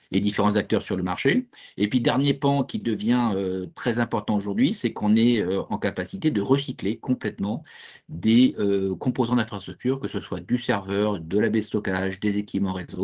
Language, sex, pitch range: French, male, 100-120 Hz